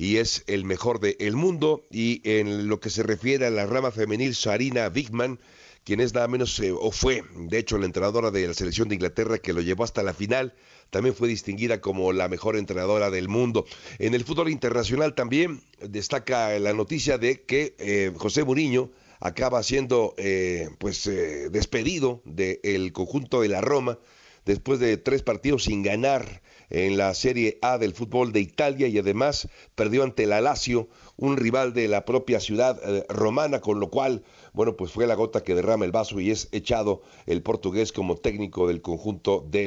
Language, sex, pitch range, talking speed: Spanish, male, 100-130 Hz, 190 wpm